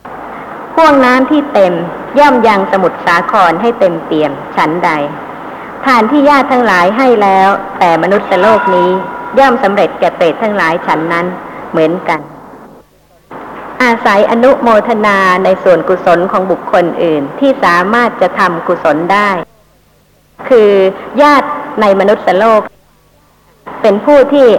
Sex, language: male, Thai